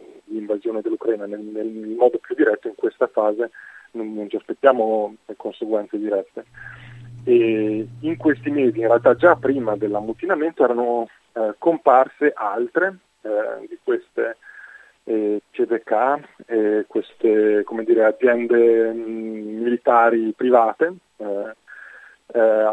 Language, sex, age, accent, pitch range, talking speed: Italian, male, 30-49, native, 110-165 Hz, 115 wpm